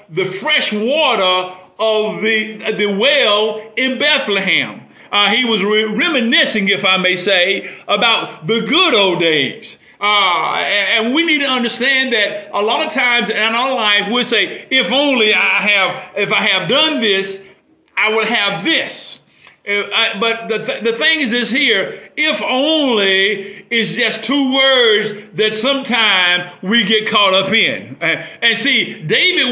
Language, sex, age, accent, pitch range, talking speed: English, male, 50-69, American, 205-255 Hz, 160 wpm